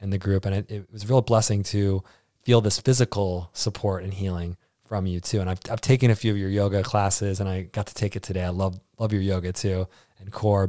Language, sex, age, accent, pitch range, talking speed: English, male, 20-39, American, 95-115 Hz, 255 wpm